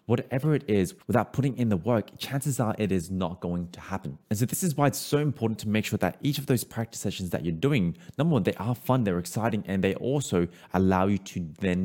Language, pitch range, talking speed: English, 95-130 Hz, 255 wpm